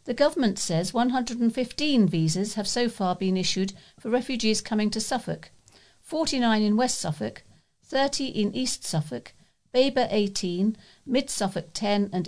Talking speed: 135 wpm